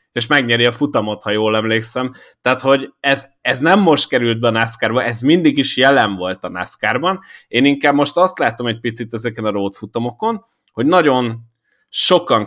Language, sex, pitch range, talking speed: Hungarian, male, 110-150 Hz, 185 wpm